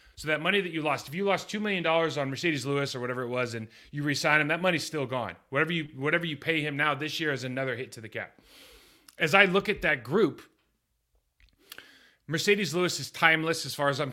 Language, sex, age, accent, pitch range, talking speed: English, male, 30-49, American, 115-145 Hz, 230 wpm